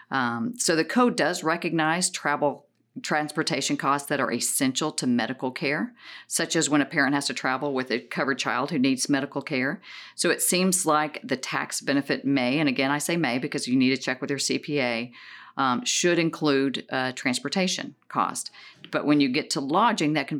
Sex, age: female, 50-69